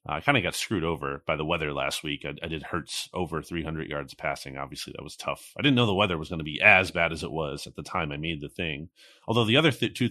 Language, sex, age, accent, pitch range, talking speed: English, male, 30-49, American, 75-95 Hz, 295 wpm